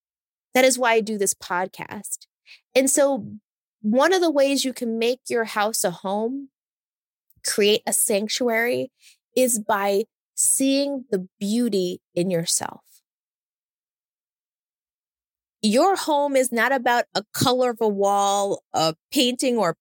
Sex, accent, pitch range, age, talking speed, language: female, American, 200-260 Hz, 20-39, 135 wpm, English